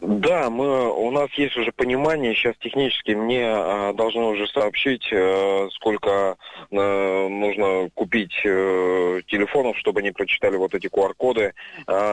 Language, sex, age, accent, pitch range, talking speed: Russian, male, 20-39, native, 100-135 Hz, 140 wpm